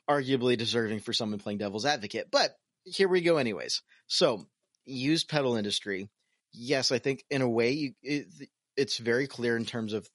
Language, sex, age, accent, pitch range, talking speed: English, male, 30-49, American, 100-130 Hz, 175 wpm